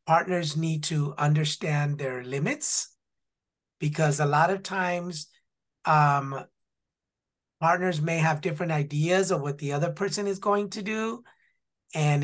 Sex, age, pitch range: male, 30-49, 140-180 Hz